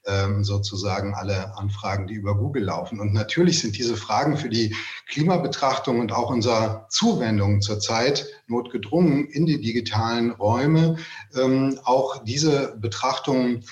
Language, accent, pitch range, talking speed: German, German, 105-130 Hz, 125 wpm